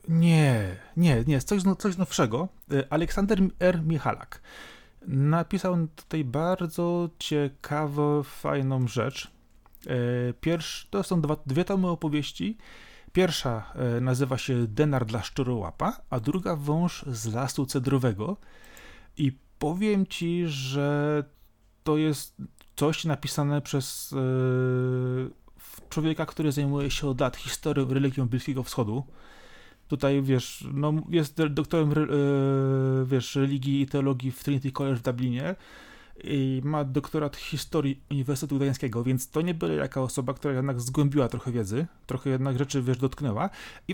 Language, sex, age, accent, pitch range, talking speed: Polish, male, 30-49, native, 130-155 Hz, 125 wpm